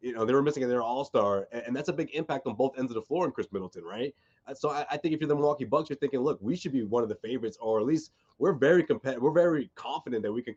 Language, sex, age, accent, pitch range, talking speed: English, male, 20-39, American, 120-155 Hz, 295 wpm